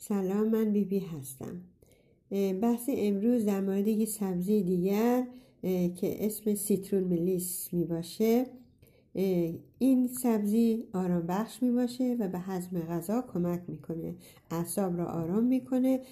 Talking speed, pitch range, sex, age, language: 125 wpm, 175-220 Hz, female, 60-79, Persian